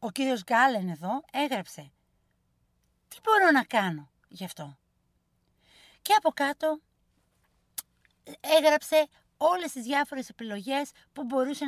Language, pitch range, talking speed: Greek, 210-310 Hz, 110 wpm